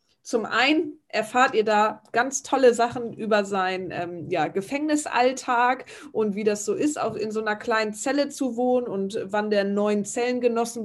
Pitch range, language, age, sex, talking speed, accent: 200-240 Hz, German, 20-39, female, 165 wpm, German